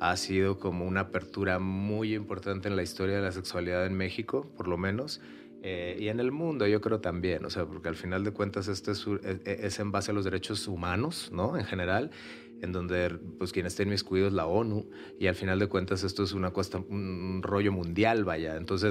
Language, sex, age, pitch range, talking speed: Spanish, male, 30-49, 95-105 Hz, 220 wpm